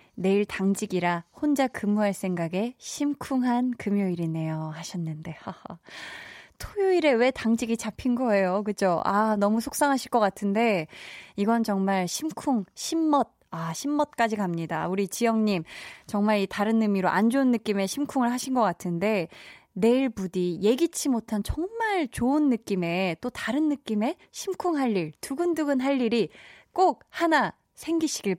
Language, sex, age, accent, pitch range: Korean, female, 20-39, native, 185-255 Hz